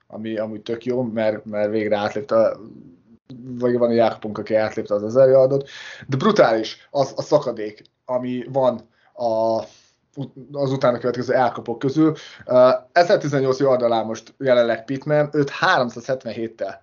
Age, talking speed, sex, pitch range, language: 20-39, 130 wpm, male, 115-150 Hz, Hungarian